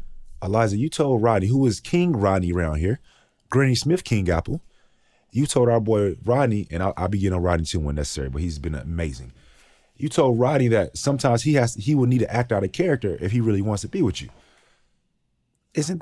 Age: 30-49